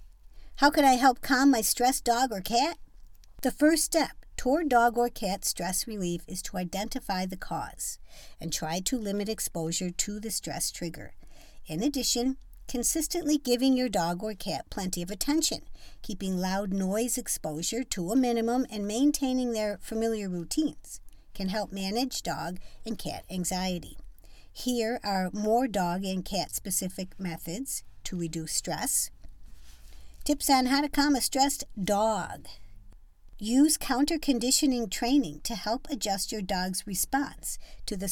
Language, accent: English, American